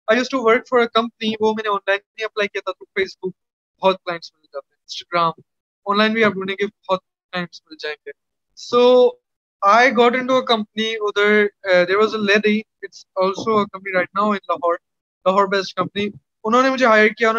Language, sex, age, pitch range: Urdu, male, 20-39, 195-240 Hz